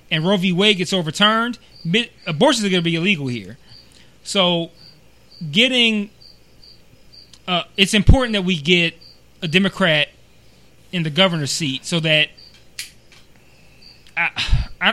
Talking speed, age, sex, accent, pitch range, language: 120 wpm, 30-49, male, American, 160-195 Hz, English